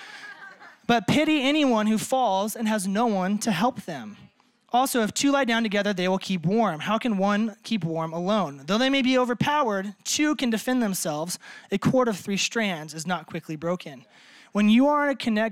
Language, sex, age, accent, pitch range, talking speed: English, male, 20-39, American, 195-245 Hz, 200 wpm